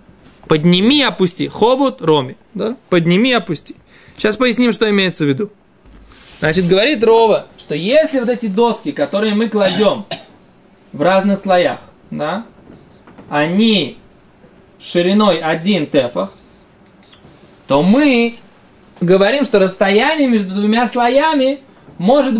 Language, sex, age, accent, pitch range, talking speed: Russian, male, 20-39, native, 185-240 Hz, 110 wpm